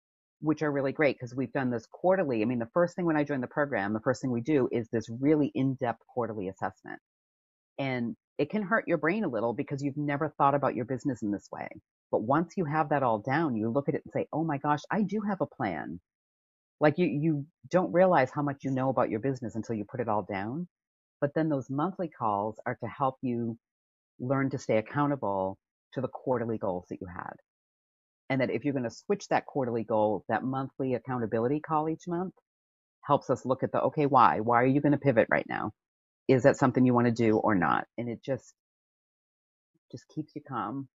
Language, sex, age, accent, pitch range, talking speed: English, female, 40-59, American, 115-150 Hz, 225 wpm